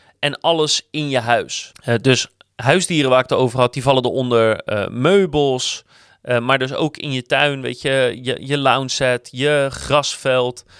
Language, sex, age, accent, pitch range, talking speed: Dutch, male, 30-49, Dutch, 125-155 Hz, 190 wpm